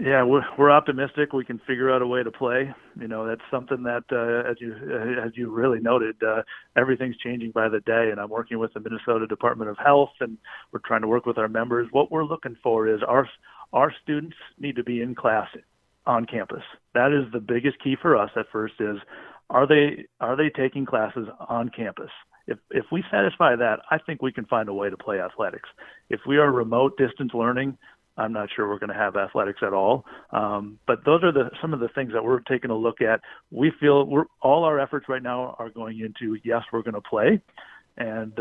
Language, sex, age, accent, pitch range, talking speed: English, male, 40-59, American, 115-135 Hz, 225 wpm